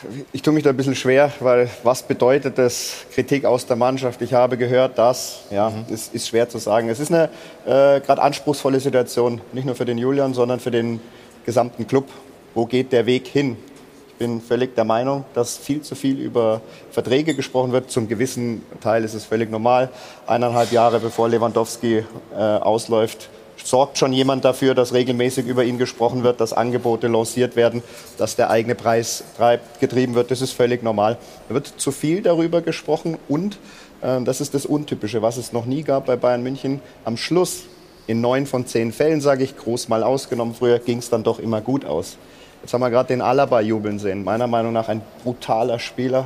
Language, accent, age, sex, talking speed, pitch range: German, German, 30-49, male, 195 wpm, 115-135 Hz